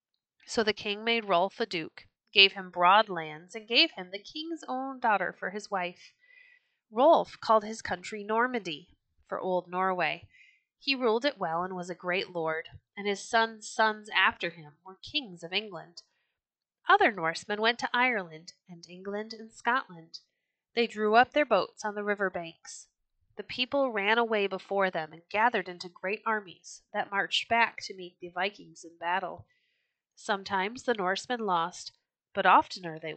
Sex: female